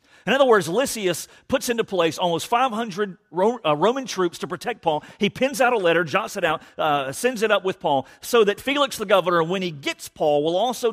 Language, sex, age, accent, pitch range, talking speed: English, male, 40-59, American, 145-195 Hz, 220 wpm